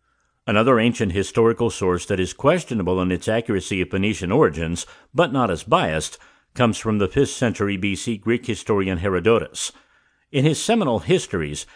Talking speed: 155 wpm